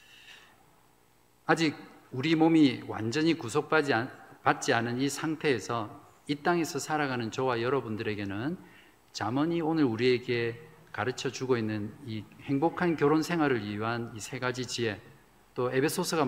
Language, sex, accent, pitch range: Korean, male, native, 110-155 Hz